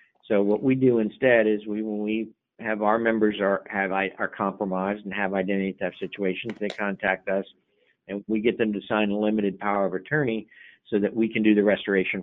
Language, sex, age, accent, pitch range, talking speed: English, male, 50-69, American, 95-110 Hz, 210 wpm